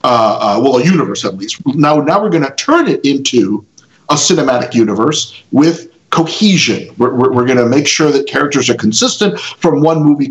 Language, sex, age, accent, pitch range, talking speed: English, male, 50-69, American, 140-220 Hz, 190 wpm